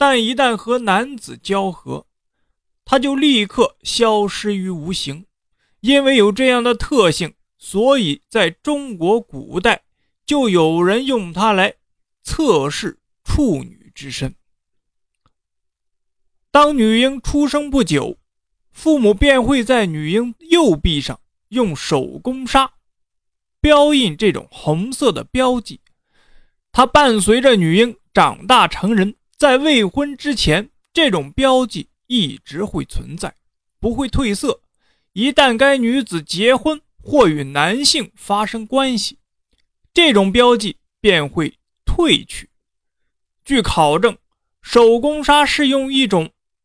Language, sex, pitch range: Chinese, male, 200-275 Hz